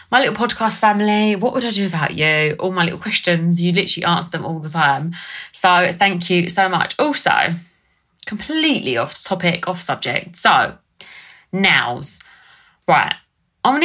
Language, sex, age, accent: English, female, 20-39, British